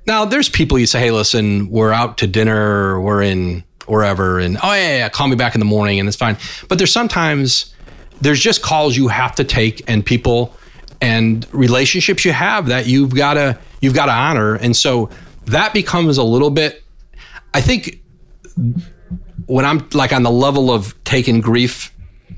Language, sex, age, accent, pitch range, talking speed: English, male, 30-49, American, 100-130 Hz, 185 wpm